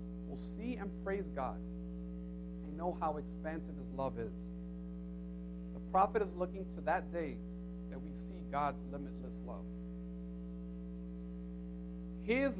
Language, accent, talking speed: English, American, 120 wpm